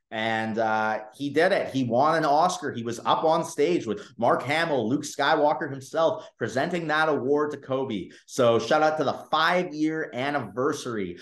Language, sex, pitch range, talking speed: English, male, 115-140 Hz, 170 wpm